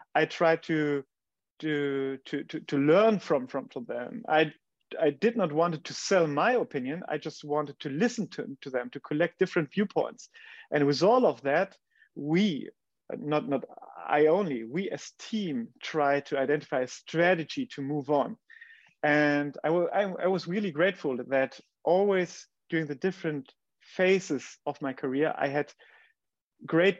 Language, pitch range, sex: English, 145-185 Hz, male